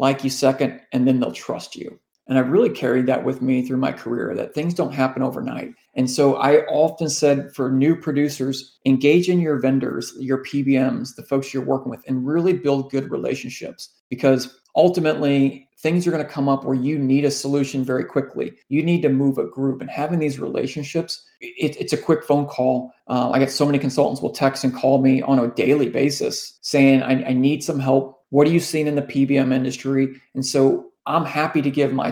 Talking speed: 215 wpm